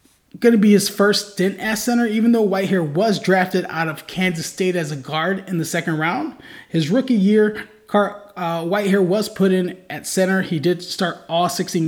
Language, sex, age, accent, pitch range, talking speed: English, male, 20-39, American, 170-215 Hz, 195 wpm